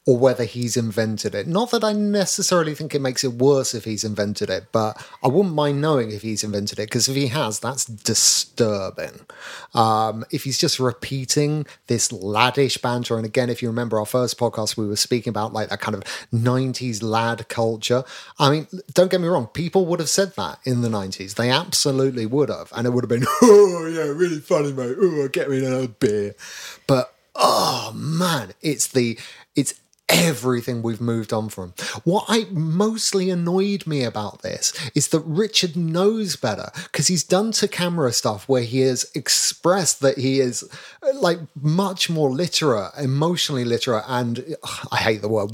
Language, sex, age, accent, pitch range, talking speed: English, male, 30-49, British, 120-180 Hz, 185 wpm